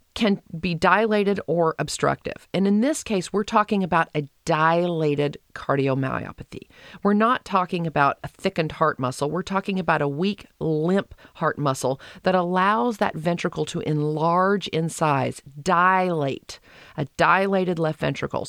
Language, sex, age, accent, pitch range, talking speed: English, female, 40-59, American, 150-190 Hz, 145 wpm